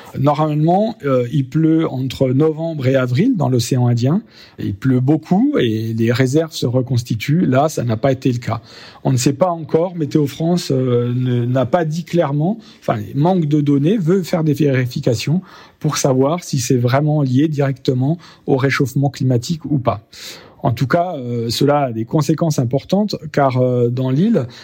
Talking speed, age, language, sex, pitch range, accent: 175 wpm, 40-59, French, male, 130-160 Hz, French